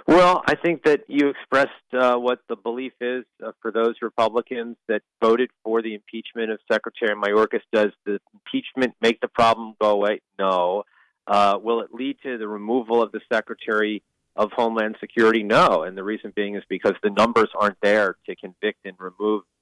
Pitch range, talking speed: 100-120 Hz, 185 wpm